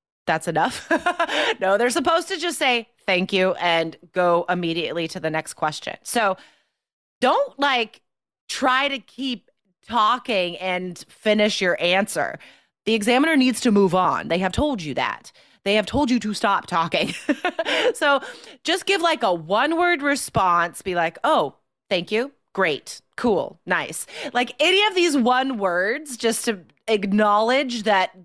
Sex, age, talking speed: female, 30-49, 150 wpm